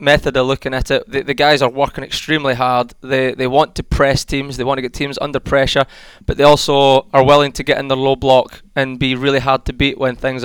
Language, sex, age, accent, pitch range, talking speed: English, male, 20-39, British, 130-145 Hz, 255 wpm